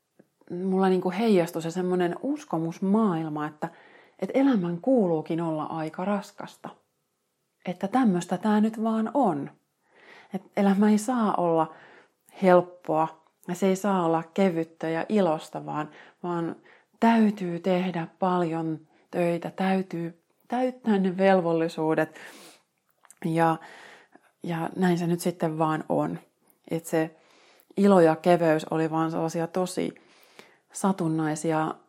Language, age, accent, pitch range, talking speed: Finnish, 30-49, native, 160-190 Hz, 115 wpm